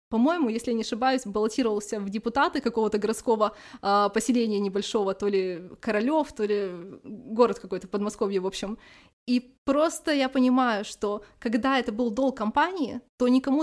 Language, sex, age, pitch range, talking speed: Russian, female, 20-39, 210-250 Hz, 150 wpm